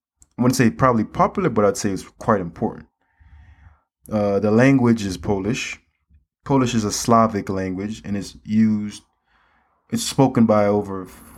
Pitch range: 85-115 Hz